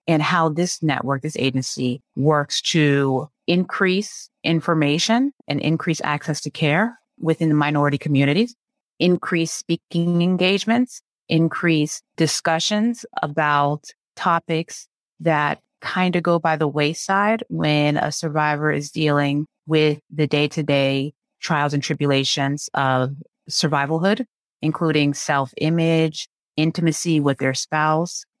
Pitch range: 145-170 Hz